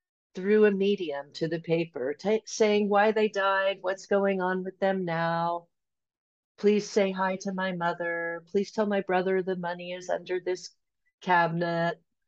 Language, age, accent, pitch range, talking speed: English, 50-69, American, 155-200 Hz, 155 wpm